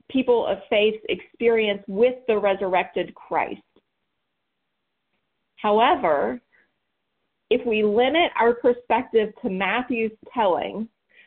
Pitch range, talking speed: 205-255 Hz, 90 wpm